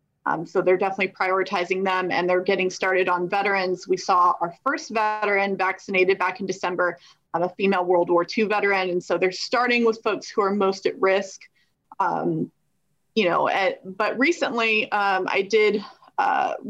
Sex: female